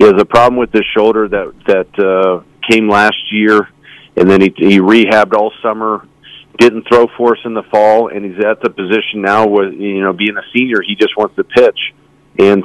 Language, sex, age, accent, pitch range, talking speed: English, male, 50-69, American, 105-120 Hz, 215 wpm